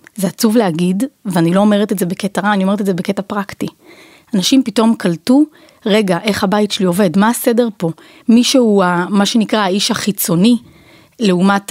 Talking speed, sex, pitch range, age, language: 175 wpm, female, 180-230 Hz, 30-49, Hebrew